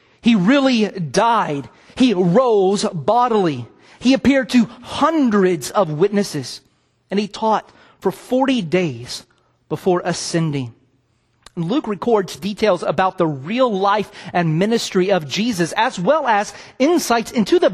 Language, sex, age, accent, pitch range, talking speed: English, male, 40-59, American, 155-220 Hz, 125 wpm